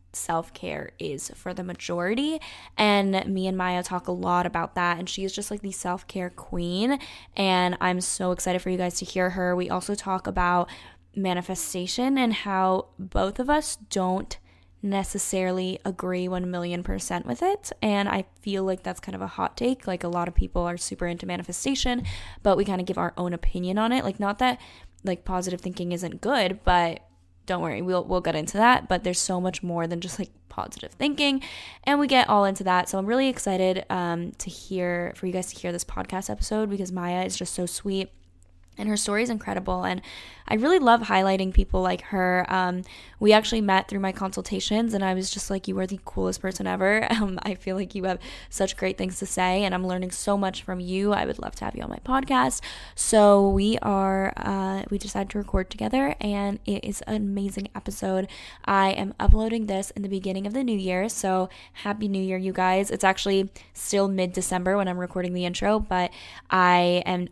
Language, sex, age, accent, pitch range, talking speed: English, female, 10-29, American, 180-200 Hz, 210 wpm